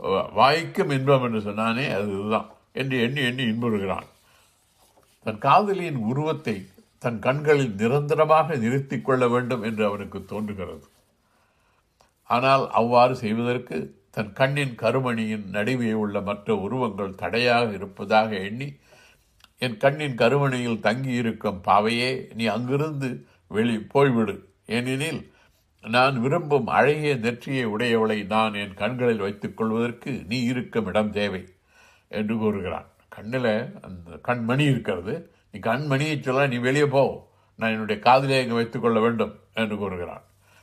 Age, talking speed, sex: 60-79, 115 wpm, male